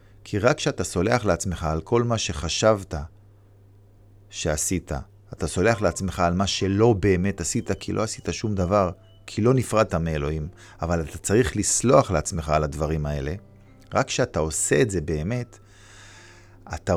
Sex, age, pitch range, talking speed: male, 50-69, 85-105 Hz, 150 wpm